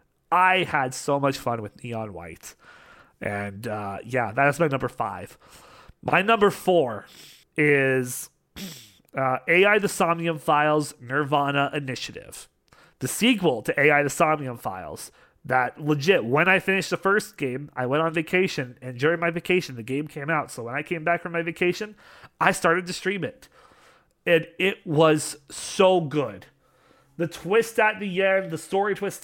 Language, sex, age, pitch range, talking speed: English, male, 30-49, 130-185 Hz, 160 wpm